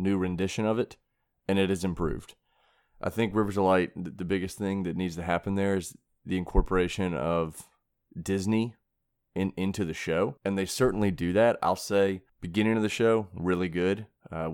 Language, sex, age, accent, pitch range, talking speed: English, male, 30-49, American, 85-100 Hz, 180 wpm